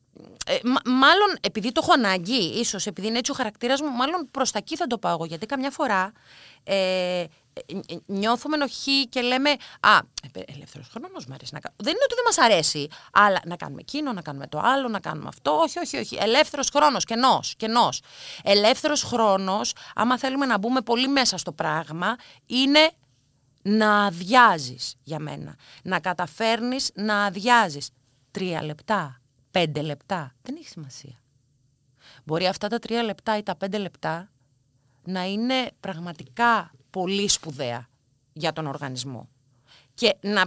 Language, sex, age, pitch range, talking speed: Greek, female, 30-49, 165-250 Hz, 155 wpm